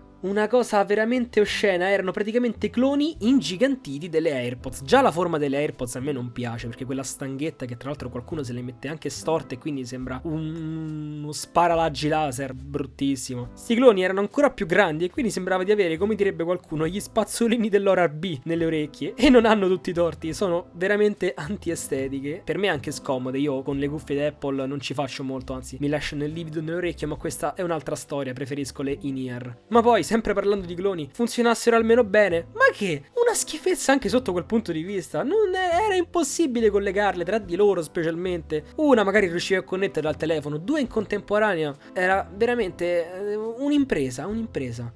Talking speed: 185 wpm